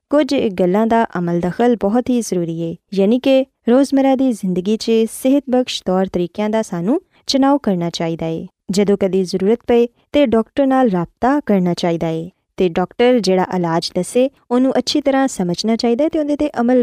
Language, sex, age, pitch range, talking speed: Urdu, female, 20-39, 185-255 Hz, 165 wpm